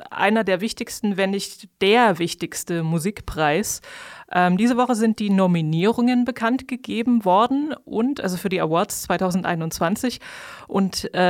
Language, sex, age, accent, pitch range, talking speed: German, female, 20-39, German, 185-230 Hz, 120 wpm